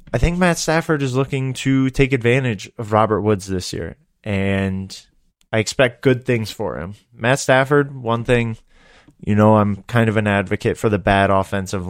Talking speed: 180 wpm